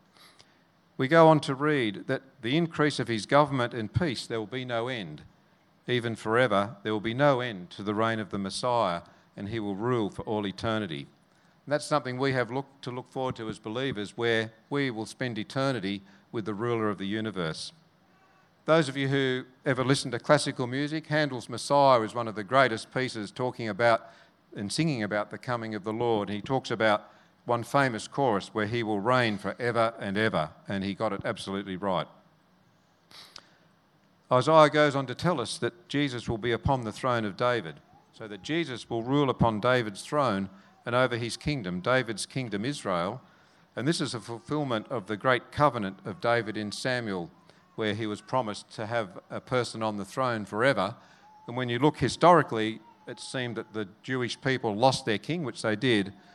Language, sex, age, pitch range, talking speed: English, male, 50-69, 110-140 Hz, 190 wpm